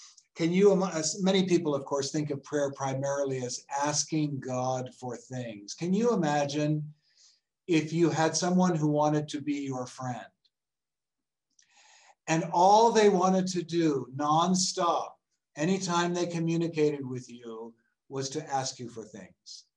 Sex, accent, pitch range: male, American, 135-160 Hz